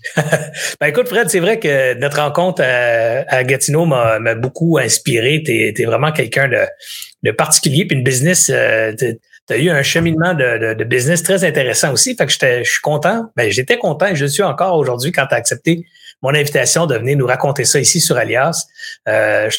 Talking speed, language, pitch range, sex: 200 wpm, French, 135-180 Hz, male